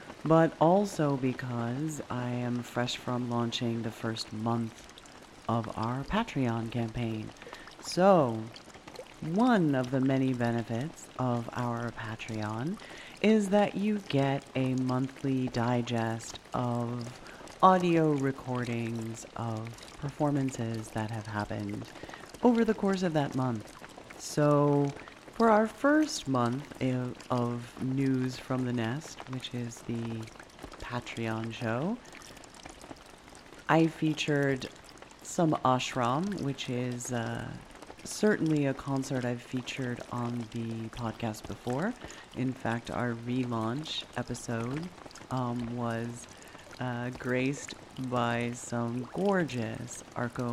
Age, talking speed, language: 30-49, 105 wpm, English